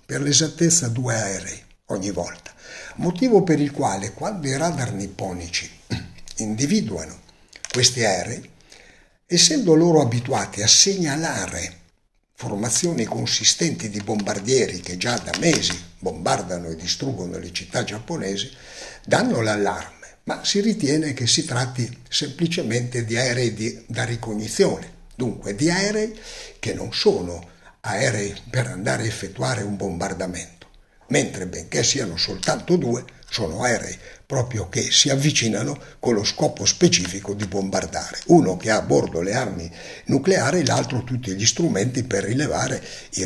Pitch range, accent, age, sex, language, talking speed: 95-140 Hz, native, 60-79, male, Italian, 130 wpm